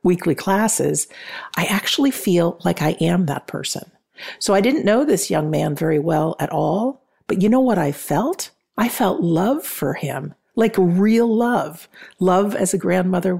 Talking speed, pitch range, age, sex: 175 wpm, 155-195 Hz, 50-69, female